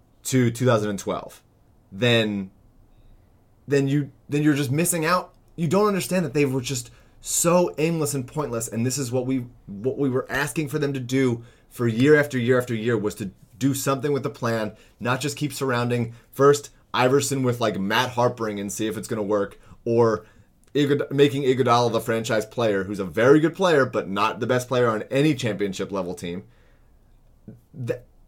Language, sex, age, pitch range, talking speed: English, male, 30-49, 105-135 Hz, 185 wpm